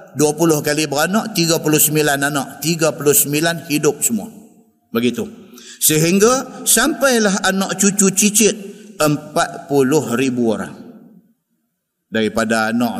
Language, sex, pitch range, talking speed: Malay, male, 120-200 Hz, 90 wpm